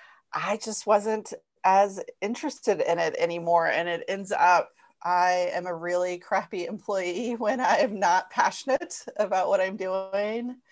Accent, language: American, English